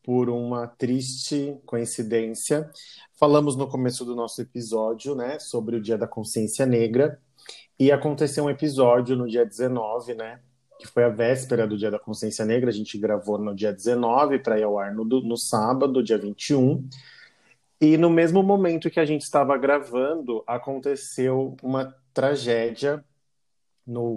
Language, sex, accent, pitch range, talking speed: Portuguese, male, Brazilian, 115-135 Hz, 155 wpm